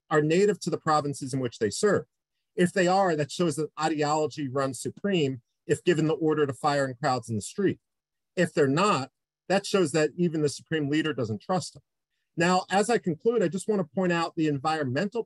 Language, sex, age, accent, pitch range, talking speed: English, male, 50-69, American, 145-185 Hz, 210 wpm